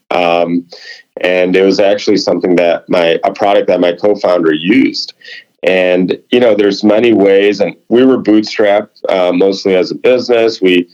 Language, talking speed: English, 165 wpm